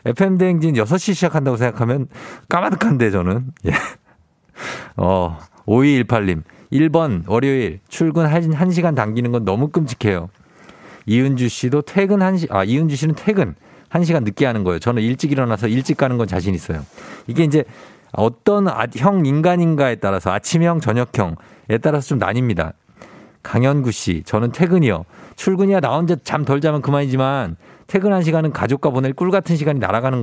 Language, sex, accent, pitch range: Korean, male, native, 105-160 Hz